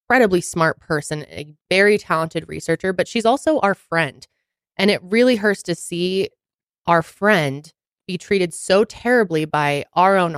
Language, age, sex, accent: English, 20-39, female, American